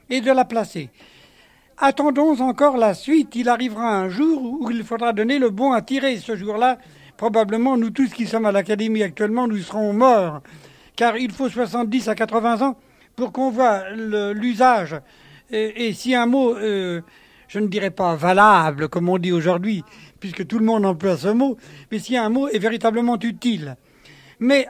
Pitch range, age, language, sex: 200-245 Hz, 60-79, French, male